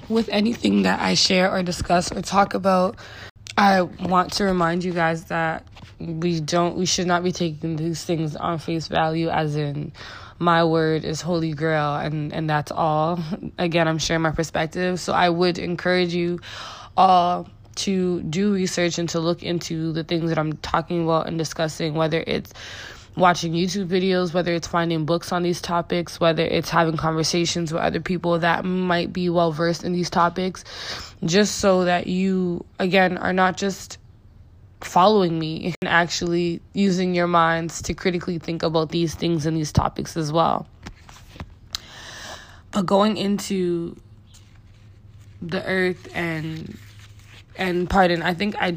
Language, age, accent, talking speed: English, 20-39, American, 160 wpm